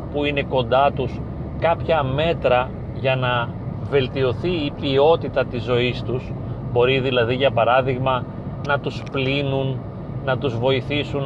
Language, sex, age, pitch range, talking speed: Greek, male, 30-49, 125-145 Hz, 130 wpm